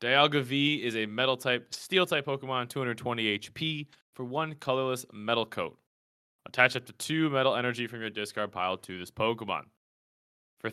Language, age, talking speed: English, 20-39, 155 wpm